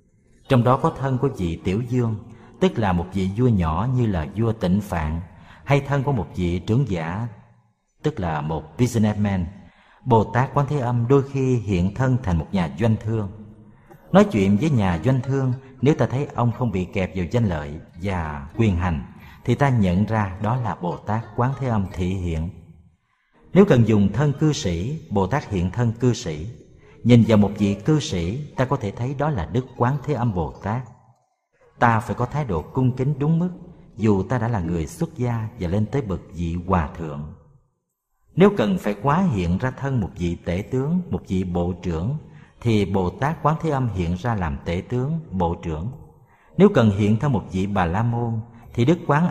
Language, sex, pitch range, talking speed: Vietnamese, male, 95-135 Hz, 205 wpm